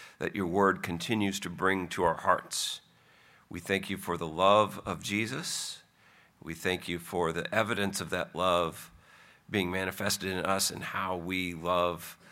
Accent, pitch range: American, 85-100 Hz